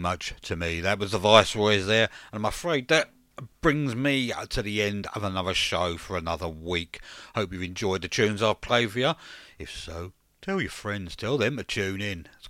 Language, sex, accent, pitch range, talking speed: English, male, British, 90-125 Hz, 205 wpm